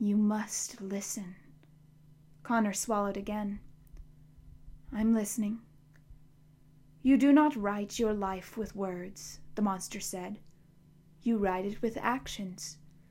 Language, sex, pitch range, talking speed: English, female, 180-235 Hz, 110 wpm